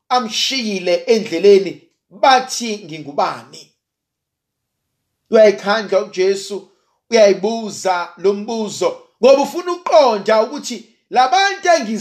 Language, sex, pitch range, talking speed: English, male, 205-305 Hz, 70 wpm